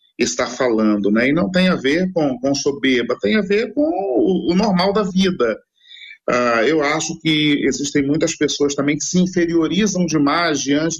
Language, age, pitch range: Portuguese, 40-59, 145-210 Hz